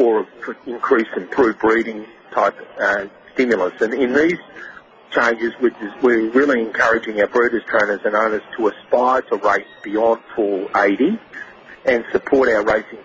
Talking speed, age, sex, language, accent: 145 wpm, 50-69, male, English, Australian